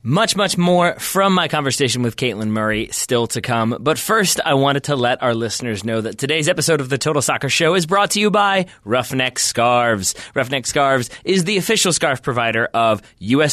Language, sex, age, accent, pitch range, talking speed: English, male, 20-39, American, 115-160 Hz, 200 wpm